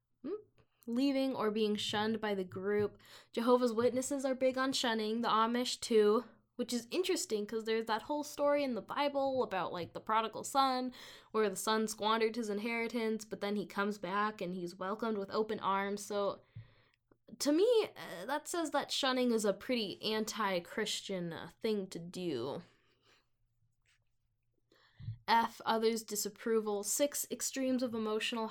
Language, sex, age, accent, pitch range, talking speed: English, female, 10-29, American, 200-255 Hz, 145 wpm